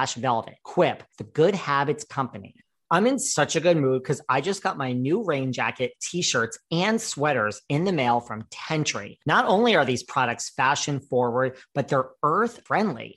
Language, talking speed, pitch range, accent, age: English, 175 wpm, 125-165 Hz, American, 40-59